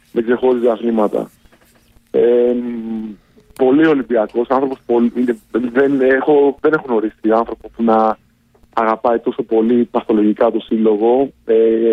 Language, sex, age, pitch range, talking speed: Greek, male, 30-49, 115-130 Hz, 115 wpm